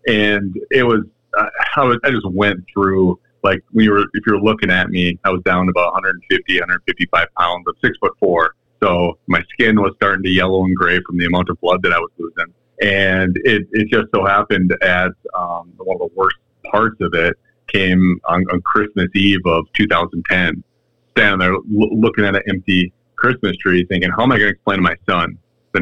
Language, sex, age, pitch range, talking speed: English, male, 30-49, 90-100 Hz, 210 wpm